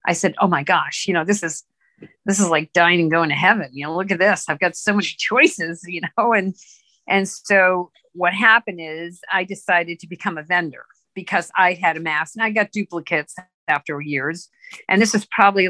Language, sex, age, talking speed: English, female, 50-69, 215 wpm